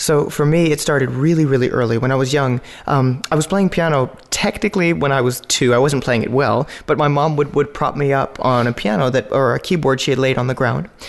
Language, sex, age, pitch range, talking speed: English, male, 20-39, 125-150 Hz, 260 wpm